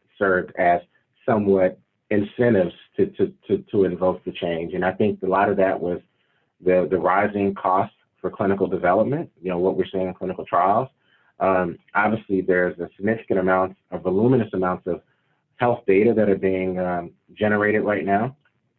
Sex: male